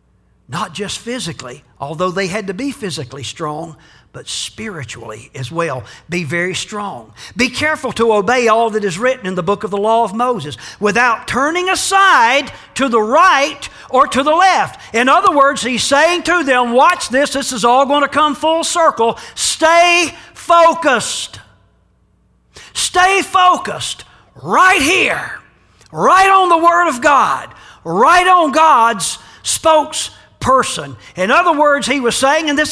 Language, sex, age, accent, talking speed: English, male, 50-69, American, 155 wpm